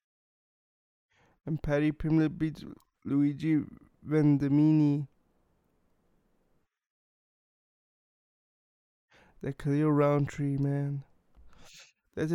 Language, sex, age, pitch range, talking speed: English, male, 20-39, 140-160 Hz, 55 wpm